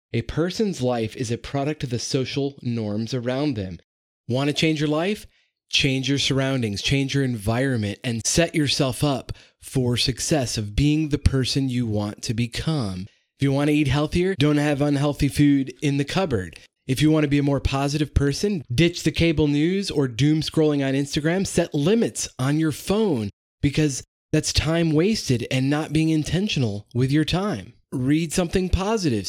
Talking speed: 180 wpm